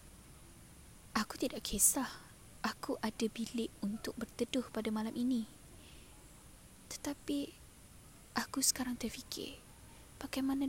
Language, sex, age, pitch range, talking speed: Malay, female, 10-29, 220-255 Hz, 90 wpm